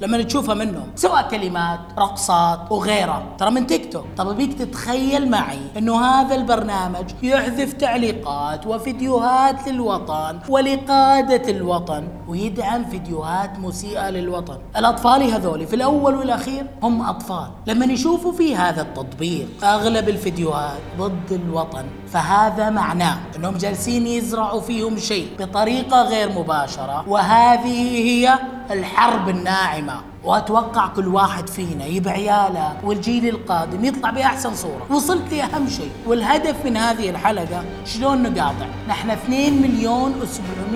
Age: 20-39